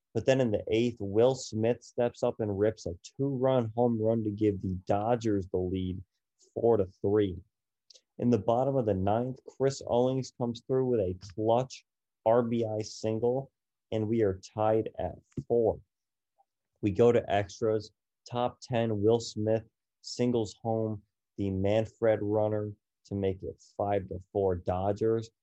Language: English